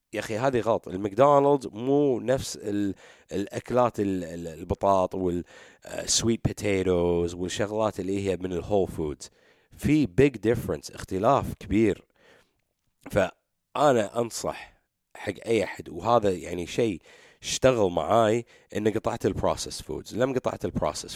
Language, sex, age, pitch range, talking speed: English, male, 30-49, 95-135 Hz, 115 wpm